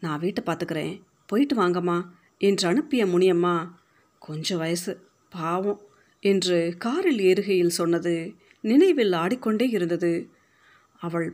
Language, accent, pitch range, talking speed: Tamil, native, 175-215 Hz, 100 wpm